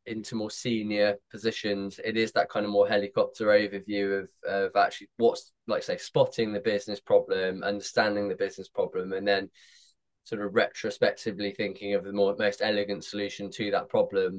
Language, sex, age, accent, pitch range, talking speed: English, male, 20-39, British, 100-120 Hz, 170 wpm